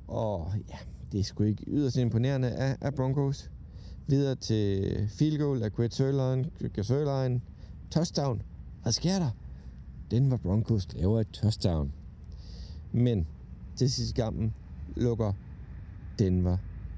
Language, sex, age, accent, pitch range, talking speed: Danish, male, 60-79, native, 85-130 Hz, 115 wpm